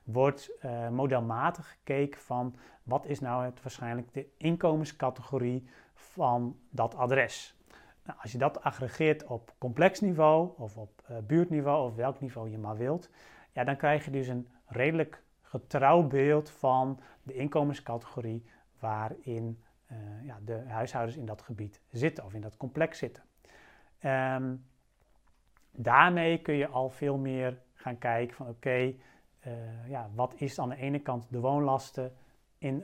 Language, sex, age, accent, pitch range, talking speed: Dutch, male, 40-59, Dutch, 120-150 Hz, 150 wpm